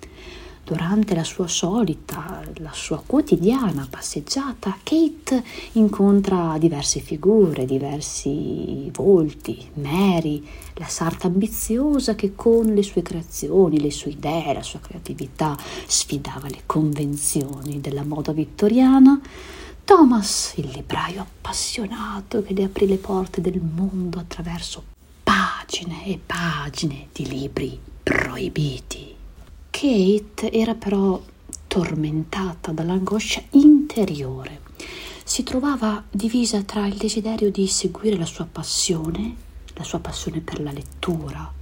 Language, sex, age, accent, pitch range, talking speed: Italian, female, 50-69, native, 160-220 Hz, 110 wpm